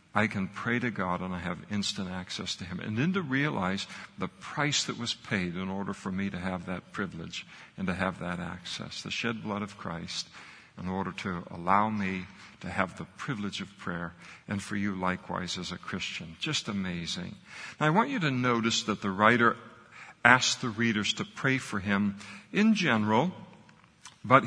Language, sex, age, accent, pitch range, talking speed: English, male, 60-79, American, 100-135 Hz, 190 wpm